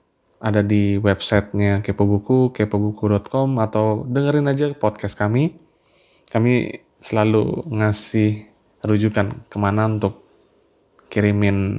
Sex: male